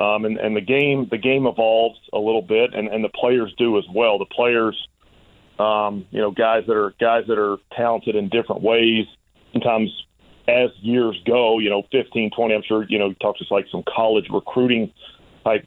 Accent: American